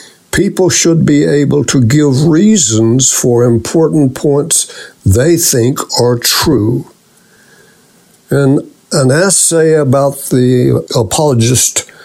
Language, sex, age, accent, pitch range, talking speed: English, male, 60-79, American, 120-165 Hz, 100 wpm